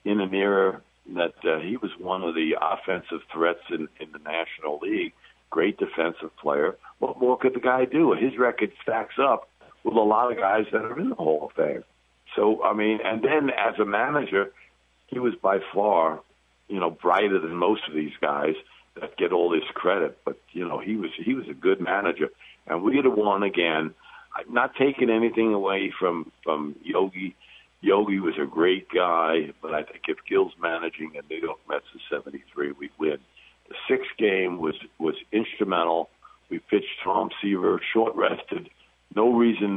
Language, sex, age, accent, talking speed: English, male, 60-79, American, 185 wpm